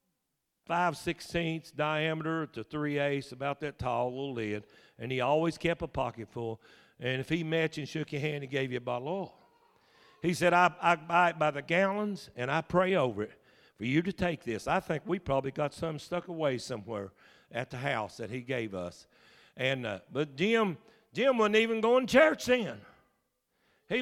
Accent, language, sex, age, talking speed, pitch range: American, English, male, 50-69, 200 wpm, 145-185 Hz